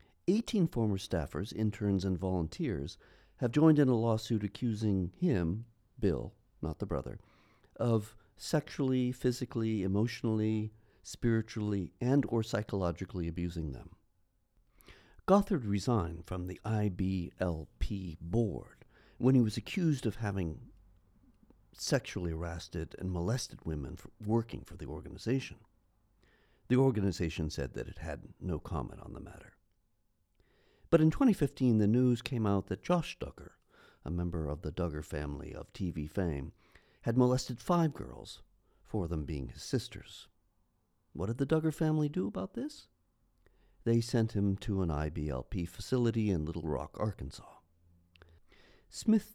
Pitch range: 85-120 Hz